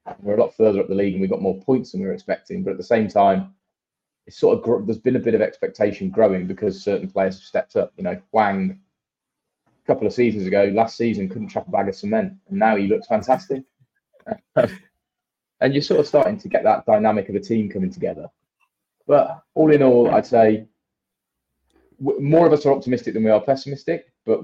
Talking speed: 215 wpm